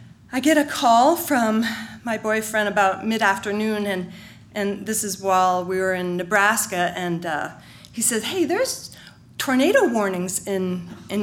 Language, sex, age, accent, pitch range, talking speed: English, female, 40-59, American, 205-255 Hz, 150 wpm